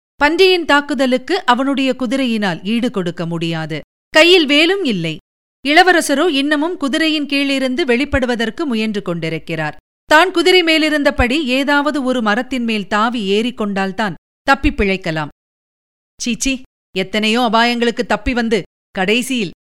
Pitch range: 200-285 Hz